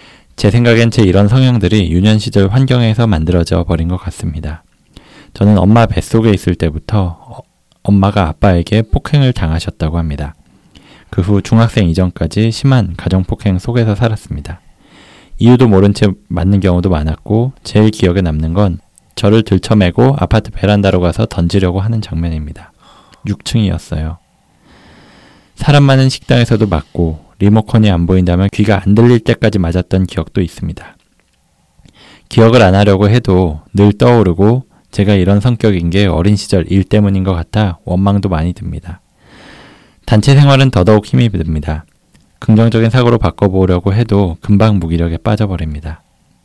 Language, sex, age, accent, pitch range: Korean, male, 20-39, native, 85-110 Hz